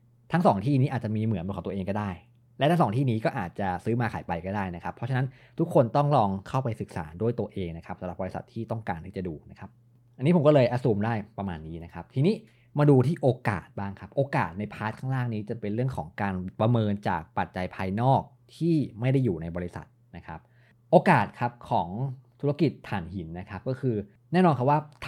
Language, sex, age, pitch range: Thai, male, 20-39, 100-130 Hz